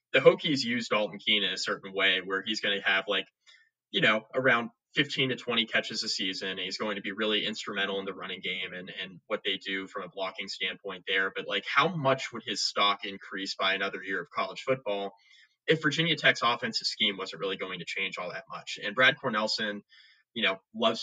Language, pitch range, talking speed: English, 95-110 Hz, 220 wpm